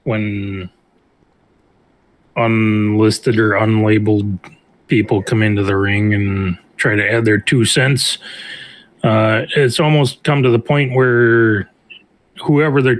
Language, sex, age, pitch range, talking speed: English, male, 30-49, 105-130 Hz, 120 wpm